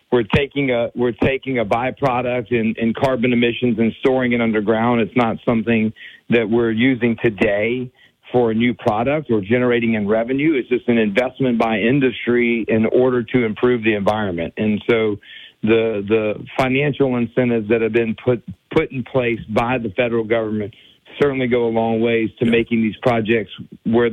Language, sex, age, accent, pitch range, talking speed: English, male, 50-69, American, 115-130 Hz, 170 wpm